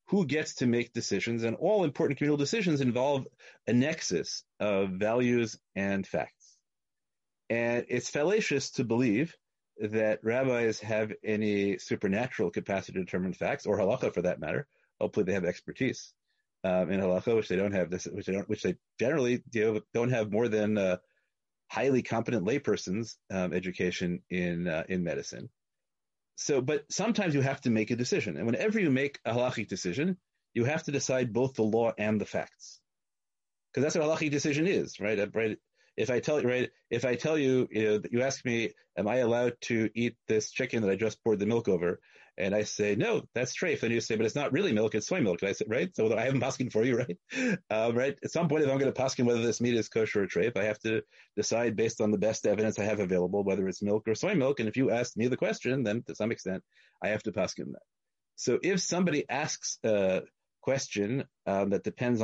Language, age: English, 30-49